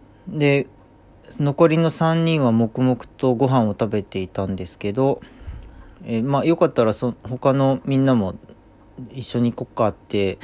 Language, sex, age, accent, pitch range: Japanese, male, 40-59, native, 105-130 Hz